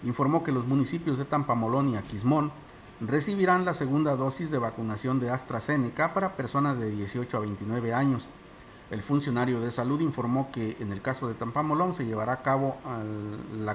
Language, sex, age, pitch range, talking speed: Spanish, male, 50-69, 115-145 Hz, 170 wpm